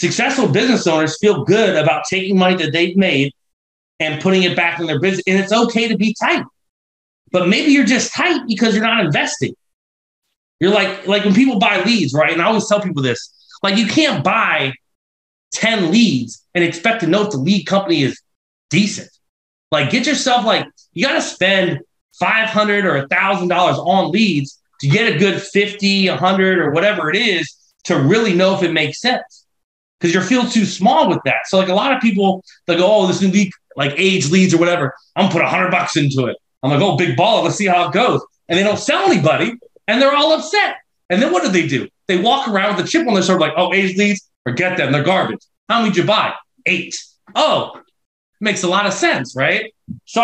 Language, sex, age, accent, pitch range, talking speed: English, male, 30-49, American, 175-220 Hz, 220 wpm